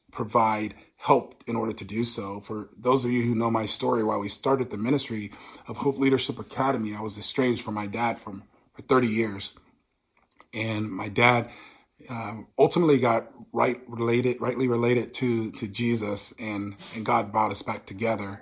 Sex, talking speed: male, 175 wpm